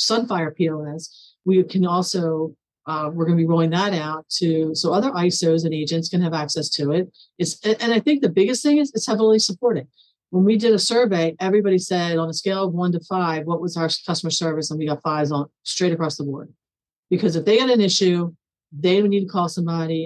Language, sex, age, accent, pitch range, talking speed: English, female, 40-59, American, 155-180 Hz, 220 wpm